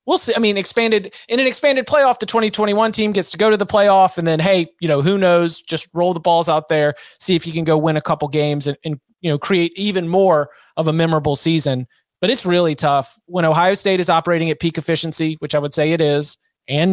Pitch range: 155-195 Hz